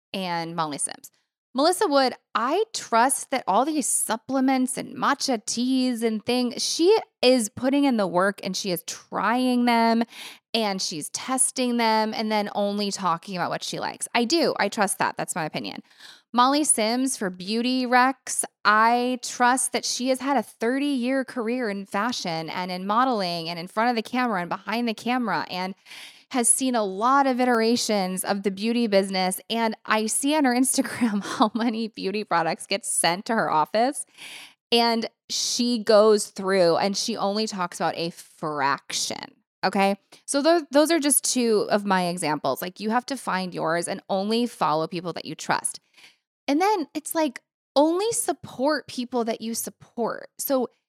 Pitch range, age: 200-260 Hz, 20-39